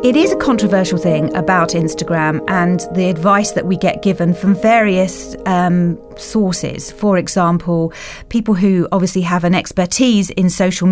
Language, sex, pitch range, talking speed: English, female, 175-215 Hz, 155 wpm